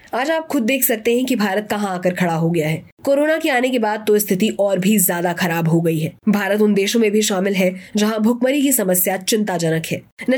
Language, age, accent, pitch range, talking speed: Hindi, 20-39, native, 185-245 Hz, 245 wpm